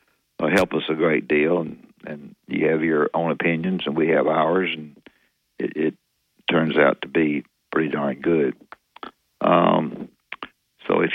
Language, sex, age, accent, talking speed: English, male, 60-79, American, 155 wpm